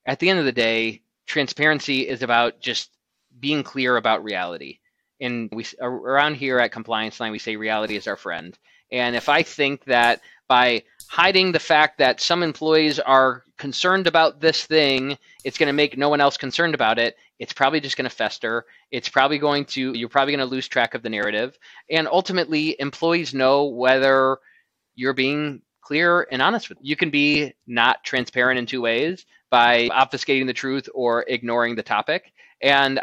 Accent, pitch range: American, 125-155 Hz